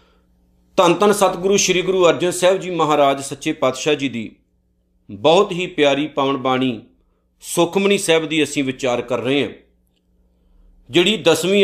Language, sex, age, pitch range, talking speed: Punjabi, male, 50-69, 130-195 Hz, 140 wpm